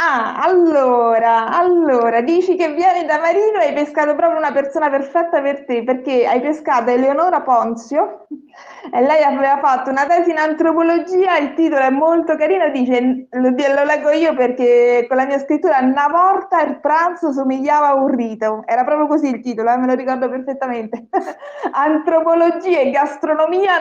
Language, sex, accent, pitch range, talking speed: Italian, female, native, 250-305 Hz, 165 wpm